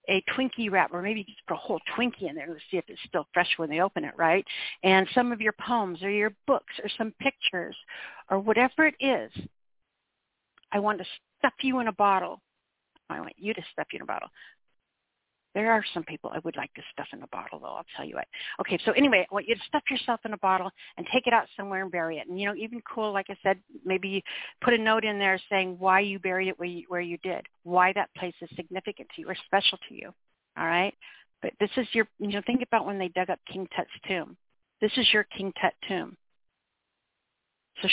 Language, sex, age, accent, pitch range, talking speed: English, female, 50-69, American, 180-220 Hz, 235 wpm